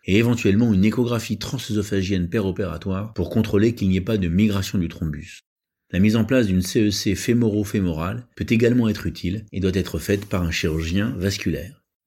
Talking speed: 175 wpm